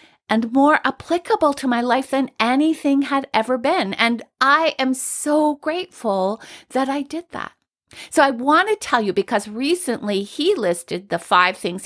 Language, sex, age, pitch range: English, female, 50-69, 215-280 Hz